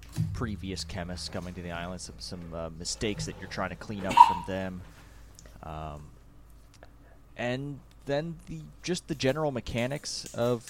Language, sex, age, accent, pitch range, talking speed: English, male, 30-49, American, 90-115 Hz, 150 wpm